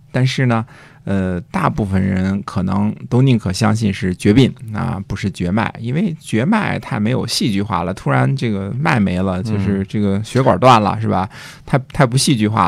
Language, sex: Chinese, male